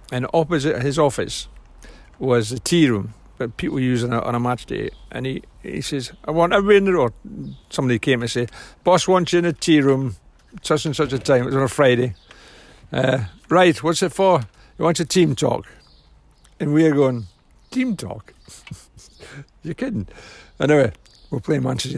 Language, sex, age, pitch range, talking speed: English, male, 60-79, 120-150 Hz, 190 wpm